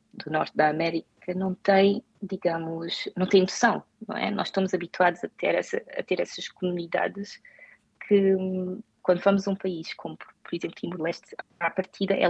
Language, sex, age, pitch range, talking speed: Portuguese, female, 20-39, 165-190 Hz, 170 wpm